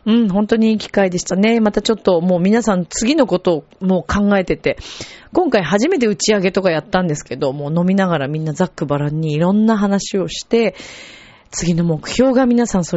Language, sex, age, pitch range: Japanese, female, 40-59, 170-230 Hz